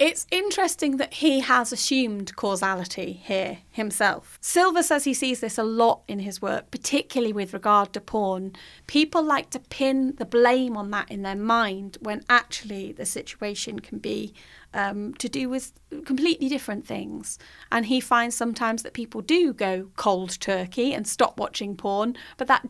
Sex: female